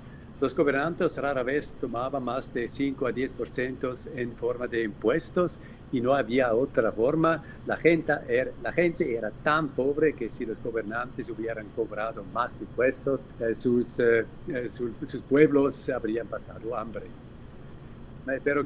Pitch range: 115-150 Hz